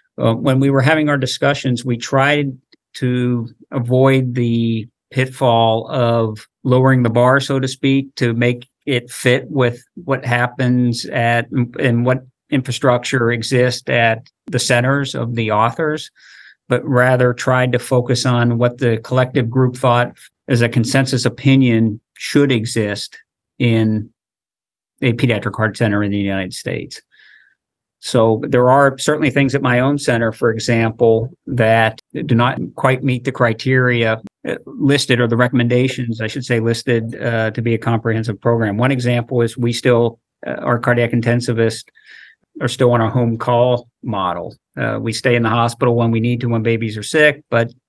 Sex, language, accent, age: male, English, American, 50-69